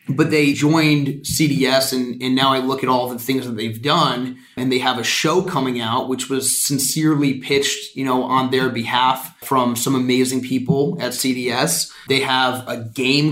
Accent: American